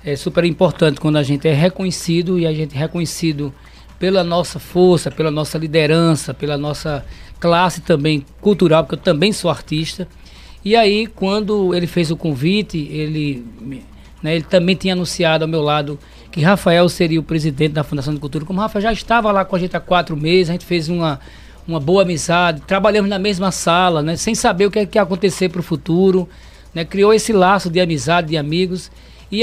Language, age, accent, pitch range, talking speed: Portuguese, 20-39, Brazilian, 160-195 Hz, 200 wpm